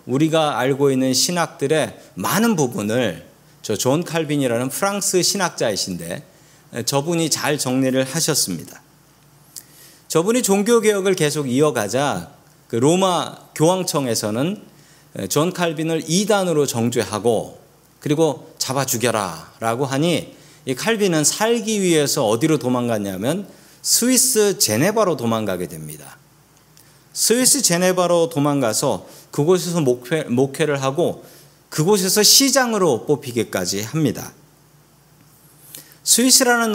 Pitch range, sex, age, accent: 130-180 Hz, male, 40-59, native